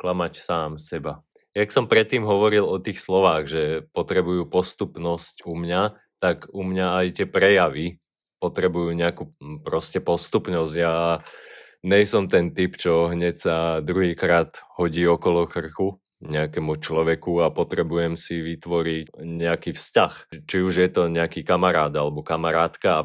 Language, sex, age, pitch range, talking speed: Slovak, male, 20-39, 85-100 Hz, 140 wpm